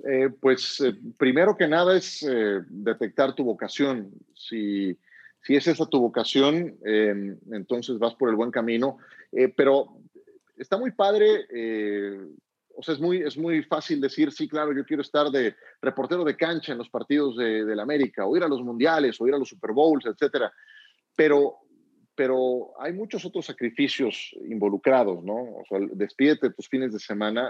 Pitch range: 110-150 Hz